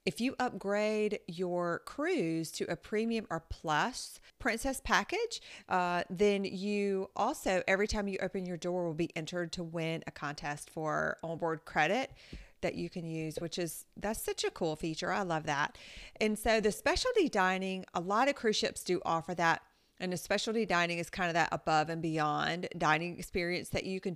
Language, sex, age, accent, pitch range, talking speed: English, female, 30-49, American, 165-205 Hz, 185 wpm